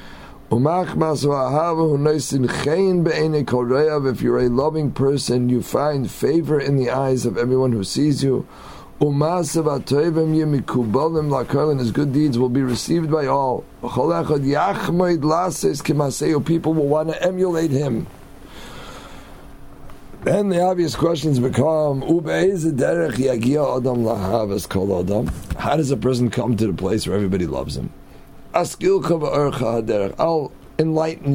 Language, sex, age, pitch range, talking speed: English, male, 50-69, 120-160 Hz, 95 wpm